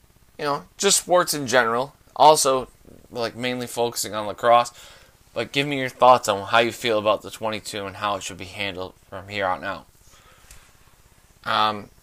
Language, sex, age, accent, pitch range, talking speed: English, male, 20-39, American, 110-135 Hz, 180 wpm